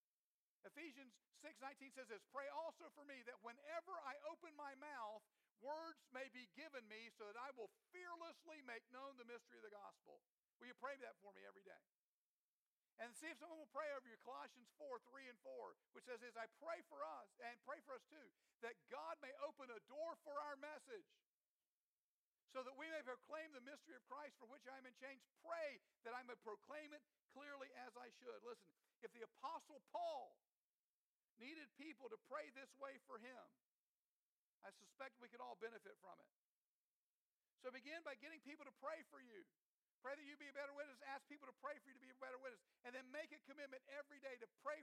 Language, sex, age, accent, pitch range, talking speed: English, male, 50-69, American, 245-300 Hz, 210 wpm